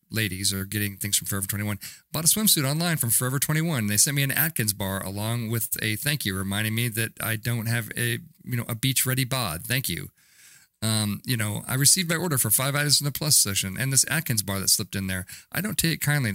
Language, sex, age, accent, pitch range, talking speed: English, male, 40-59, American, 100-140 Hz, 240 wpm